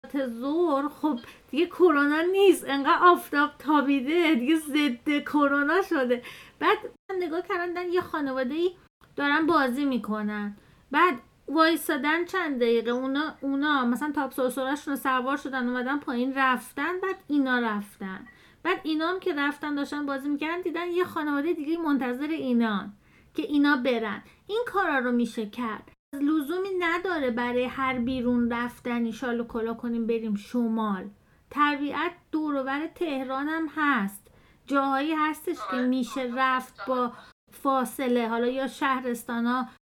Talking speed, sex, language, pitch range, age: 130 wpm, female, Persian, 250-310 Hz, 30-49